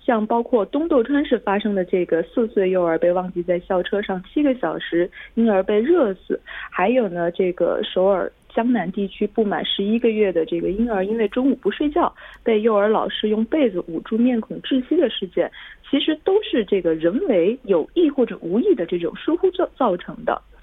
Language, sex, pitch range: Korean, female, 190-270 Hz